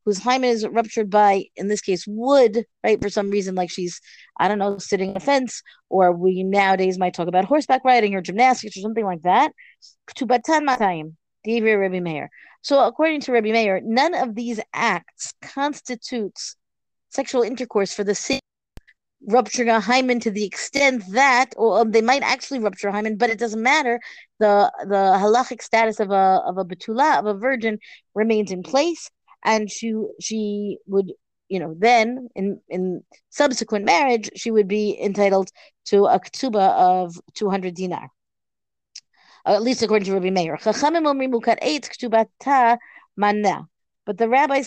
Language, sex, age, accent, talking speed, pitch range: English, female, 40-59, American, 155 wpm, 195-250 Hz